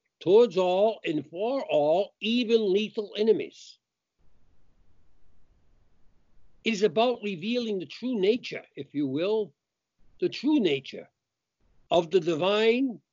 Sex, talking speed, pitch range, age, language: male, 110 wpm, 140-220 Hz, 60-79, English